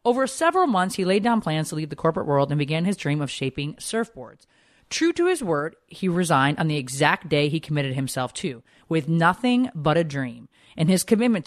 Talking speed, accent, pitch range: 215 wpm, American, 150-215 Hz